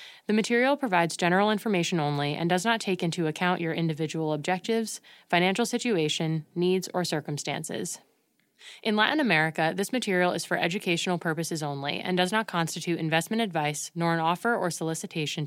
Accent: American